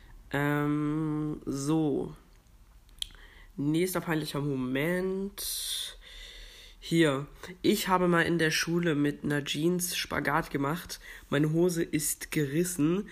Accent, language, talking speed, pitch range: German, German, 95 wpm, 135-165 Hz